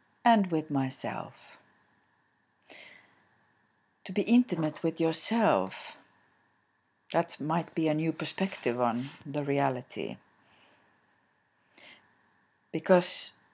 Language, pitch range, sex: English, 145-170 Hz, female